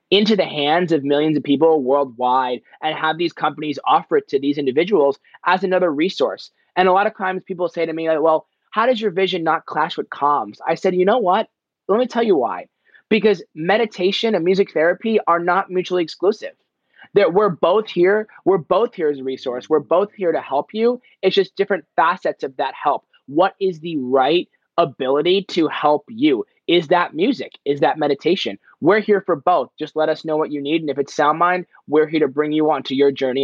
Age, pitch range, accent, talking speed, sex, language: 20-39, 145-190 Hz, American, 210 wpm, male, English